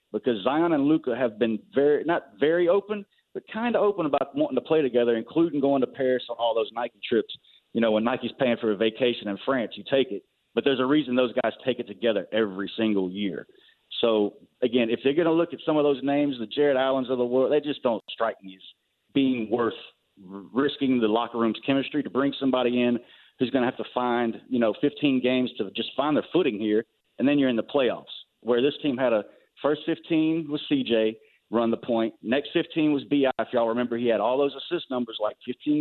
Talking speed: 230 wpm